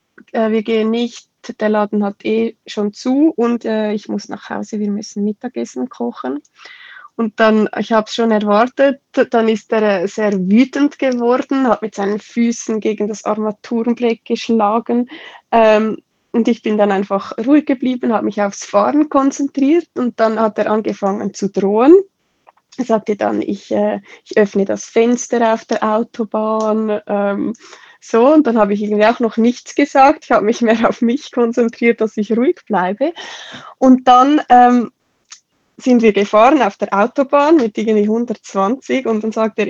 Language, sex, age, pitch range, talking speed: German, female, 20-39, 210-245 Hz, 165 wpm